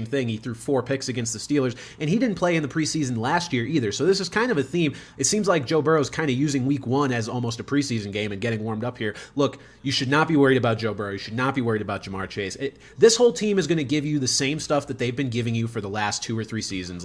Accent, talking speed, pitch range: American, 300 wpm, 115-145 Hz